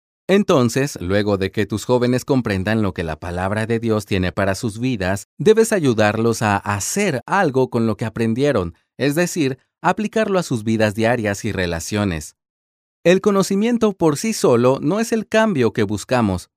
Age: 30-49